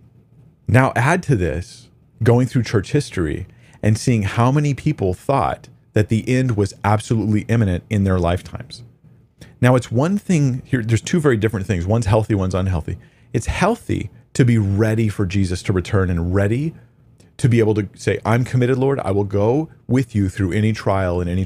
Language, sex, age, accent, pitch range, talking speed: English, male, 40-59, American, 95-130 Hz, 185 wpm